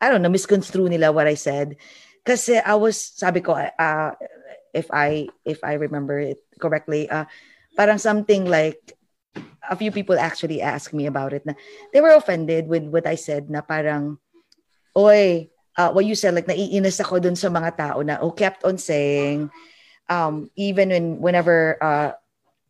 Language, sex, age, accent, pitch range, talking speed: English, female, 20-39, Filipino, 155-210 Hz, 170 wpm